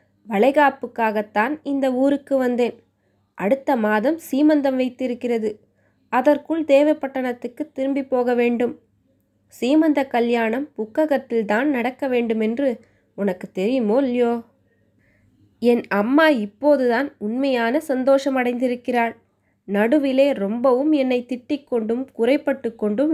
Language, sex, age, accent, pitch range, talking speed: Tamil, female, 20-39, native, 220-280 Hz, 85 wpm